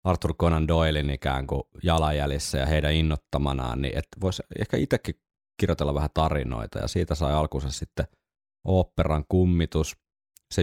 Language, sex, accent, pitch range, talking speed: Finnish, male, native, 75-85 Hz, 135 wpm